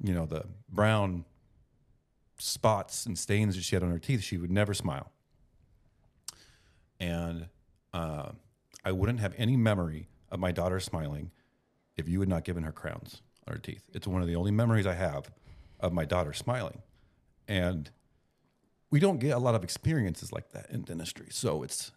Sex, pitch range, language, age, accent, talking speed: male, 85-110 Hz, English, 40-59, American, 175 wpm